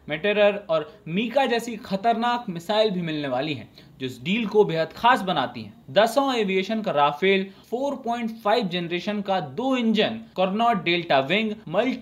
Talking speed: 145 wpm